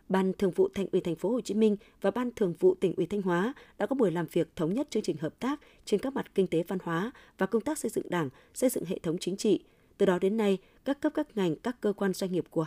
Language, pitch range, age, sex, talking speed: Vietnamese, 180-225 Hz, 20-39, female, 295 wpm